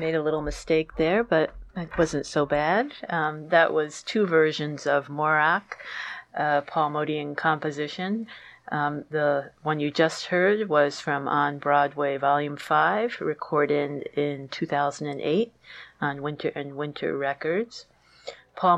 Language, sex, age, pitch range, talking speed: English, female, 40-59, 145-160 Hz, 135 wpm